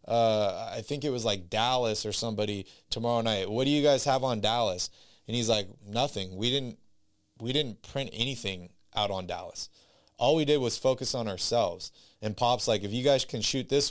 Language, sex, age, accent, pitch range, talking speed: English, male, 20-39, American, 110-140 Hz, 205 wpm